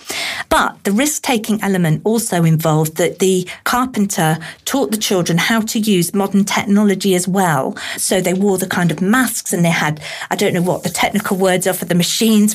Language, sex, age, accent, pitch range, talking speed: English, female, 50-69, British, 175-225 Hz, 190 wpm